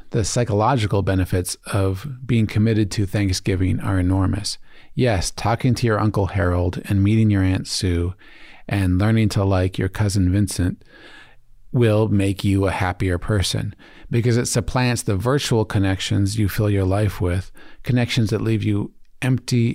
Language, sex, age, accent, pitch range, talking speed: English, male, 40-59, American, 100-120 Hz, 150 wpm